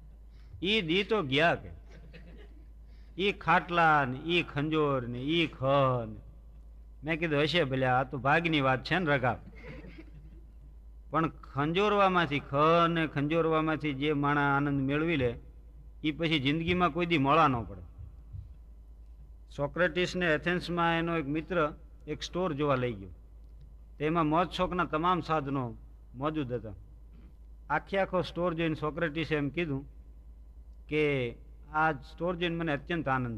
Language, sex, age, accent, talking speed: Gujarati, male, 50-69, native, 115 wpm